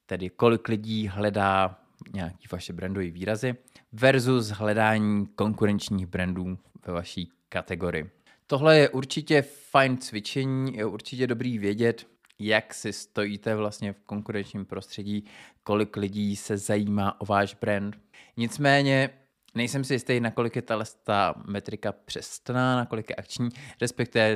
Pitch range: 100-120 Hz